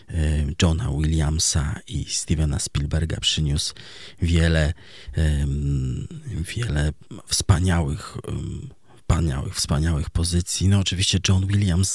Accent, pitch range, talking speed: native, 80-105 Hz, 80 wpm